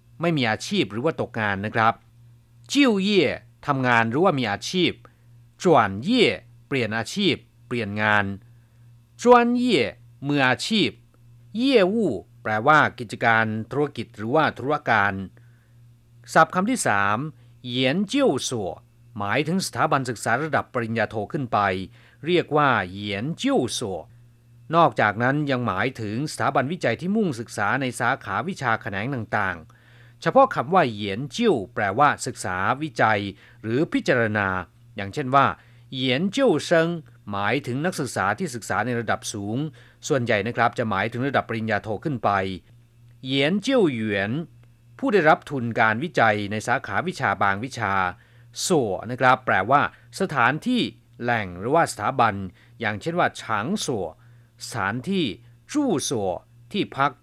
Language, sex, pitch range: Chinese, male, 110-140 Hz